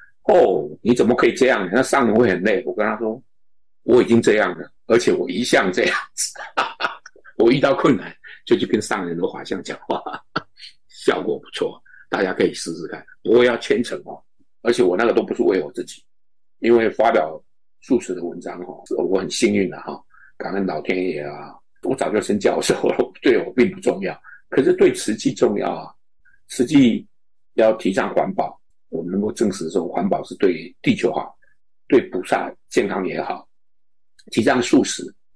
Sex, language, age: male, Chinese, 50-69